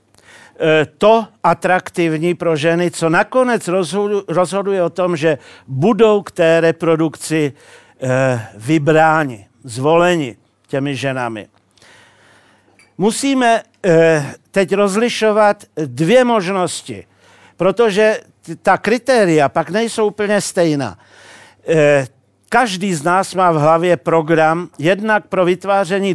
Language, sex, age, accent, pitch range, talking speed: Czech, male, 50-69, native, 155-205 Hz, 90 wpm